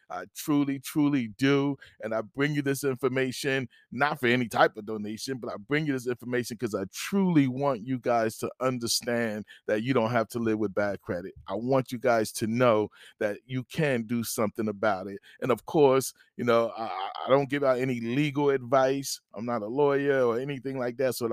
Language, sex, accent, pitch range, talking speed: English, male, American, 120-140 Hz, 210 wpm